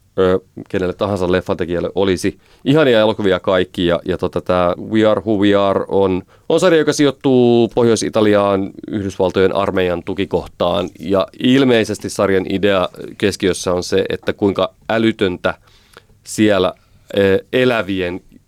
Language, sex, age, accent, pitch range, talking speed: Finnish, male, 30-49, native, 95-110 Hz, 115 wpm